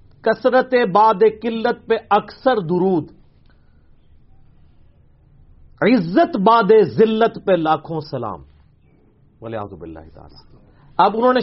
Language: English